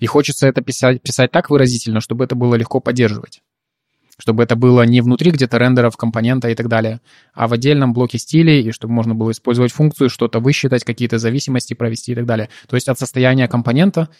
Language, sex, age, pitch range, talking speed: Russian, male, 20-39, 115-135 Hz, 200 wpm